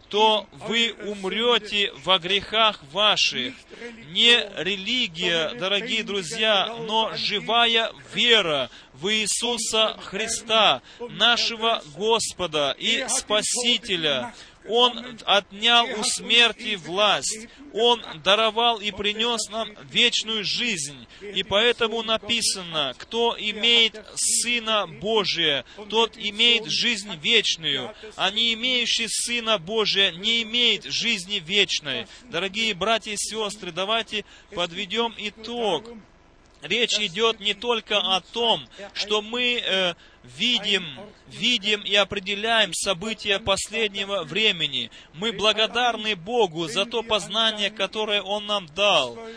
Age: 20-39